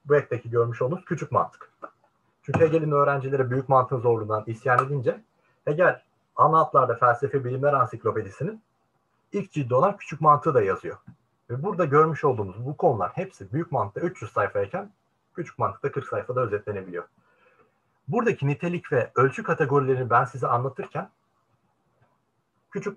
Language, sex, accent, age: Turkish, male, native, 40-59